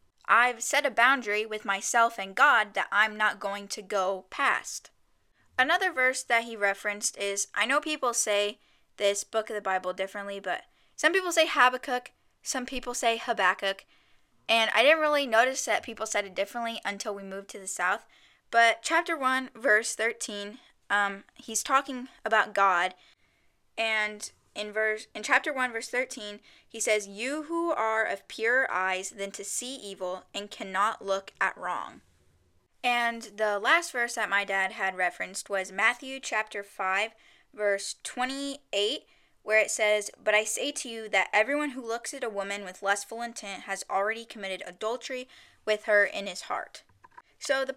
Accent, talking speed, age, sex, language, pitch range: American, 170 wpm, 10-29, female, English, 200-255 Hz